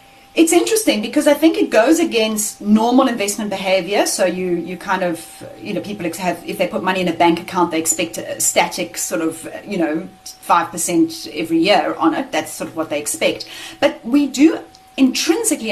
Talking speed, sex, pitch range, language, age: 195 wpm, female, 185-290 Hz, English, 30-49